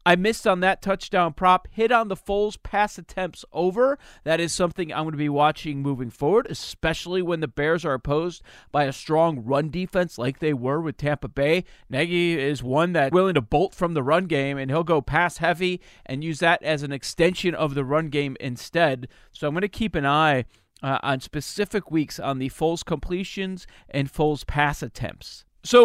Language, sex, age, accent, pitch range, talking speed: English, male, 40-59, American, 145-180 Hz, 200 wpm